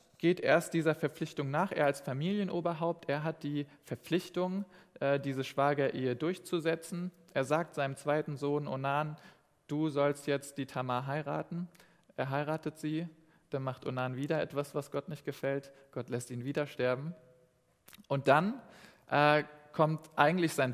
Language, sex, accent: German, male, German